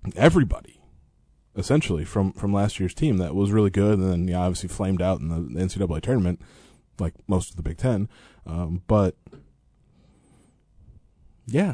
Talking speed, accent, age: 155 wpm, American, 20-39